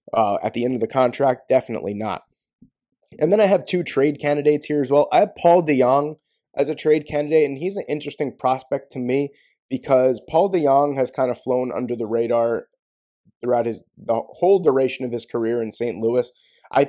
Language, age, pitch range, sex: English, 20-39, 120-150 Hz, male